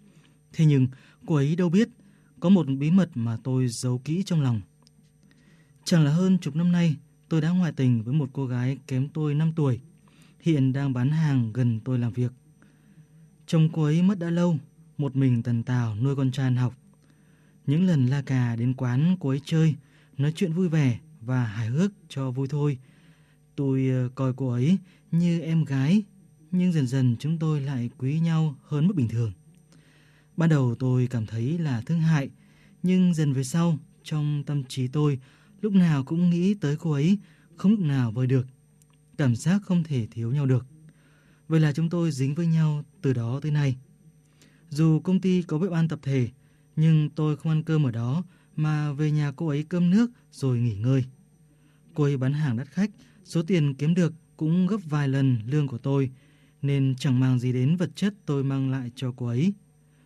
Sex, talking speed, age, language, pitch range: male, 195 wpm, 20-39, Vietnamese, 135-165 Hz